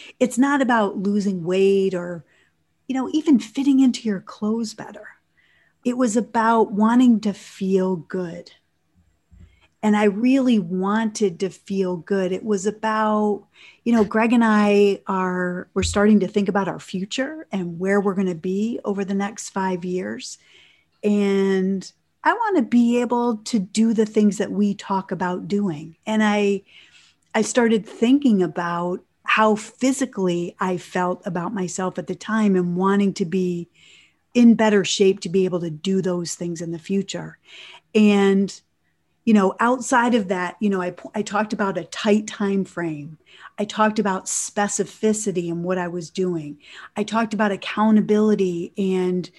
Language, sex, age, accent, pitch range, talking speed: English, female, 40-59, American, 185-220 Hz, 160 wpm